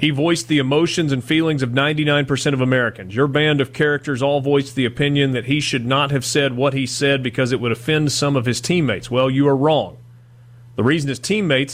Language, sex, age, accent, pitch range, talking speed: English, male, 40-59, American, 120-145 Hz, 220 wpm